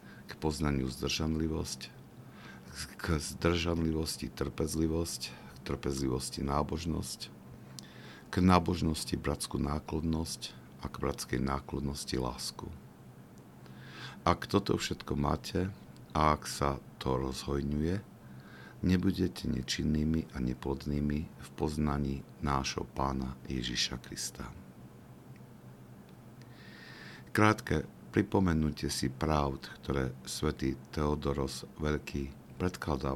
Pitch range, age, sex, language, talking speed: 65-80 Hz, 50-69, male, Slovak, 85 wpm